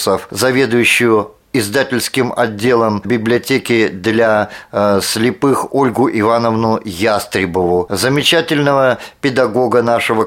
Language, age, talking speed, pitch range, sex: Russian, 50-69, 70 wpm, 115-145 Hz, male